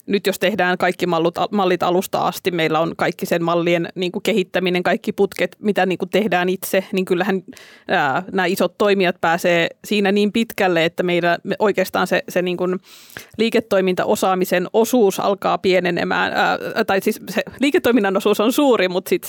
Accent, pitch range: native, 180-200 Hz